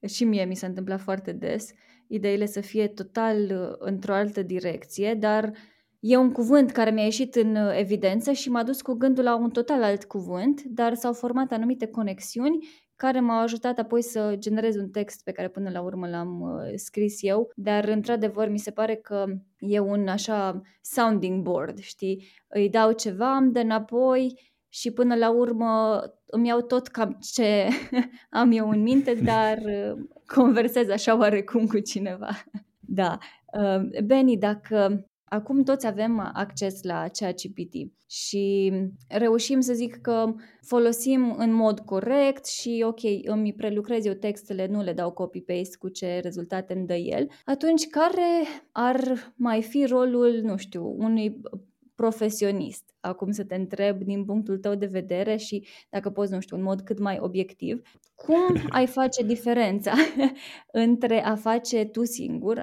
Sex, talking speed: female, 155 wpm